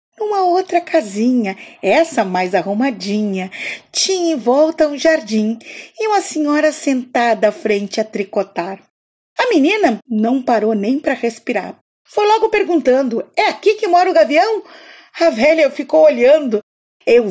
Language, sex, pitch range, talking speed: Portuguese, female, 225-330 Hz, 140 wpm